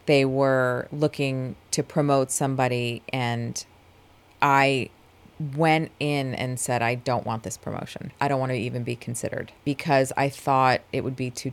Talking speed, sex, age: 160 wpm, female, 30-49